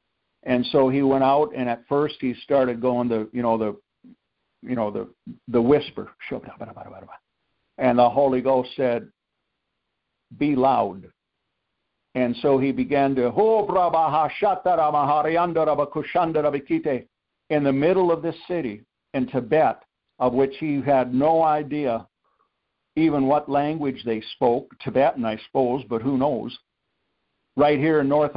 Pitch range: 125-155 Hz